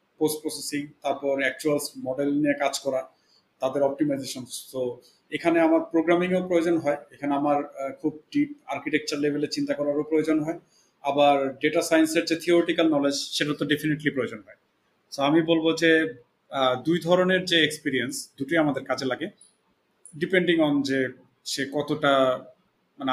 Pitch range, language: 135-160 Hz, Bengali